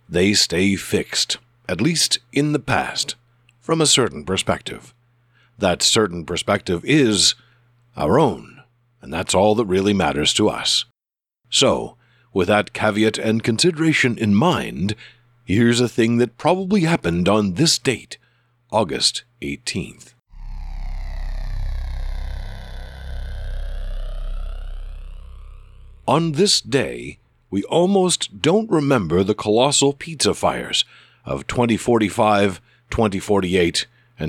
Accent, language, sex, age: American, English, male, 60-79